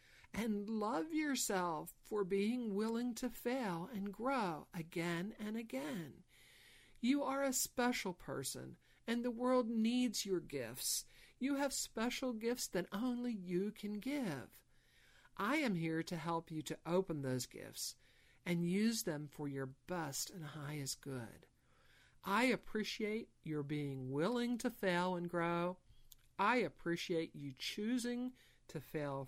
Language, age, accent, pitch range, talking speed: English, 60-79, American, 140-215 Hz, 135 wpm